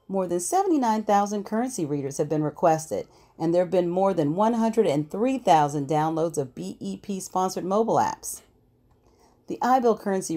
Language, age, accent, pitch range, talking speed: English, 40-59, American, 150-205 Hz, 135 wpm